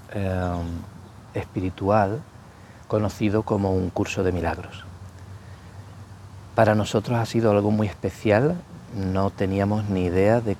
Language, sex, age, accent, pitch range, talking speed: English, male, 40-59, Spanish, 95-110 Hz, 115 wpm